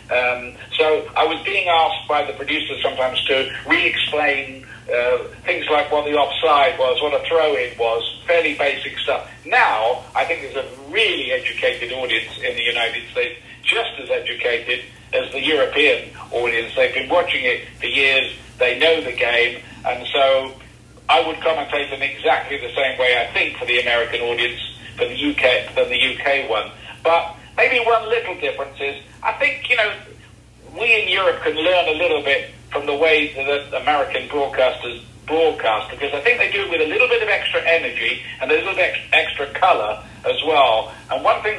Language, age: English, 50-69